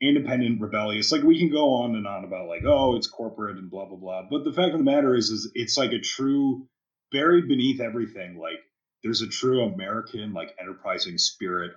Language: English